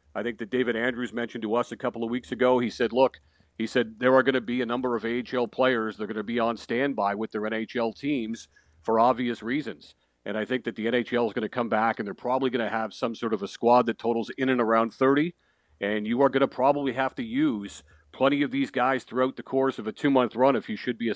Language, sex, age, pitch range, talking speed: English, male, 50-69, 115-130 Hz, 270 wpm